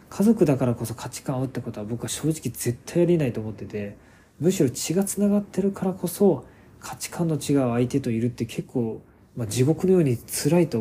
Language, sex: Japanese, male